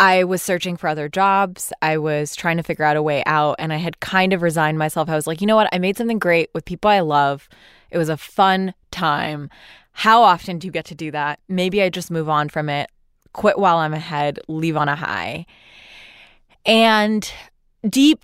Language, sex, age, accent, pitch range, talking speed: English, female, 20-39, American, 155-185 Hz, 215 wpm